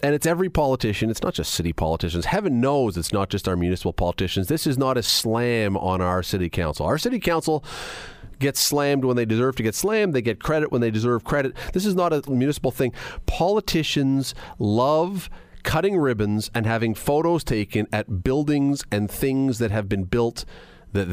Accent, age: American, 40-59